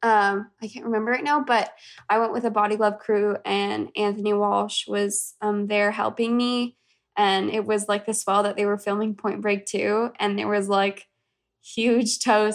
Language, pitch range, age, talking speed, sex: English, 195-220 Hz, 10-29, 195 wpm, female